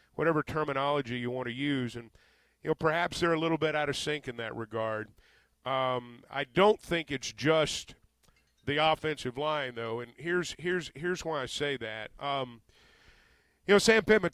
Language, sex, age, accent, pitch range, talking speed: English, male, 40-59, American, 120-155 Hz, 180 wpm